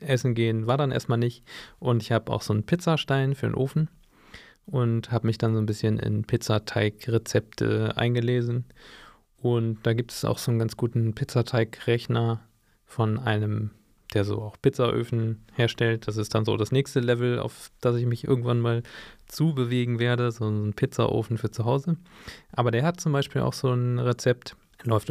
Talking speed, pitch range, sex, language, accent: 175 wpm, 115-130 Hz, male, German, German